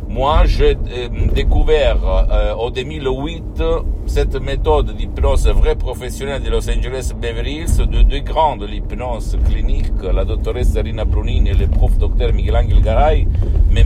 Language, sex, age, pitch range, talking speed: Italian, male, 50-69, 80-105 Hz, 155 wpm